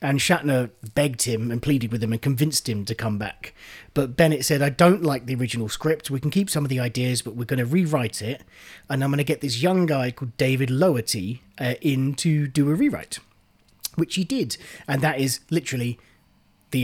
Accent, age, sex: British, 30-49, male